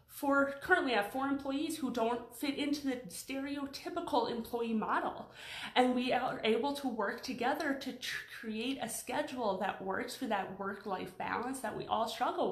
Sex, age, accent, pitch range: female, 30-49, American, 210-270 Hz